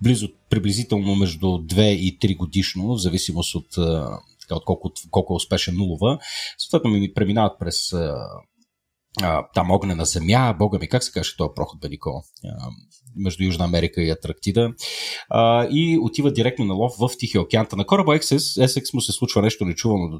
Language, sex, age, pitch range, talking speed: Bulgarian, male, 30-49, 90-115 Hz, 155 wpm